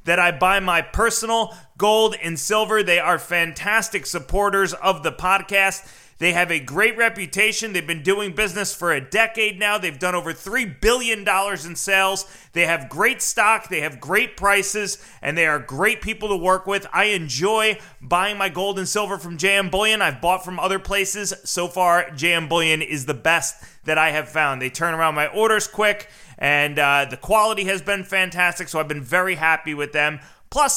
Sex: male